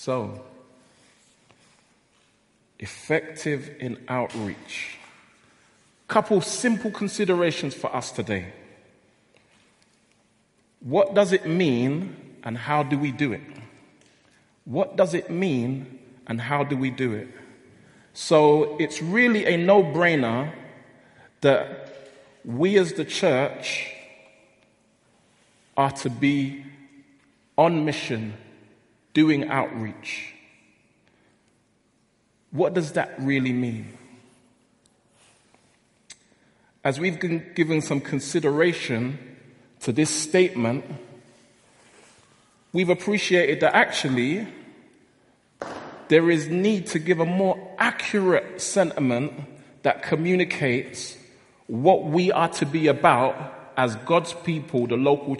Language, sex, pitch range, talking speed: English, male, 125-170 Hz, 95 wpm